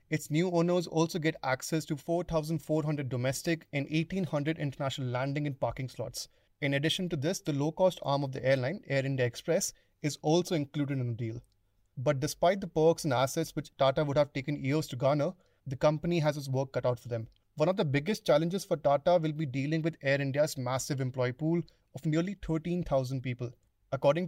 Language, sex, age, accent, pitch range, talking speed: English, male, 30-49, Indian, 135-165 Hz, 195 wpm